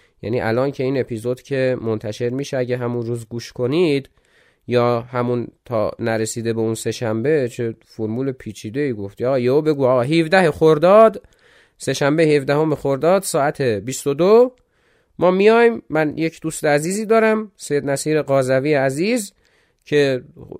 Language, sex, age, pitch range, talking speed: Persian, male, 30-49, 115-165 Hz, 135 wpm